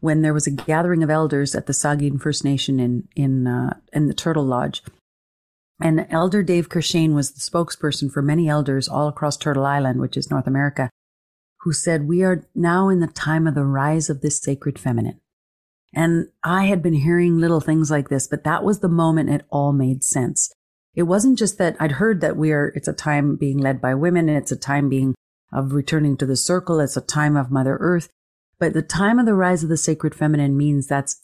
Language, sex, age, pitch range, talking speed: English, female, 40-59, 140-170 Hz, 220 wpm